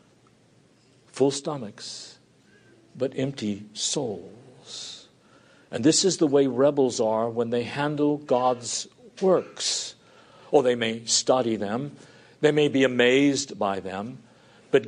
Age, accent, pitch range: 50-69, American, 120-170 Hz